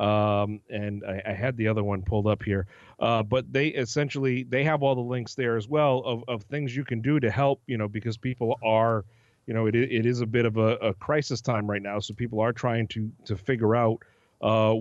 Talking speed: 240 wpm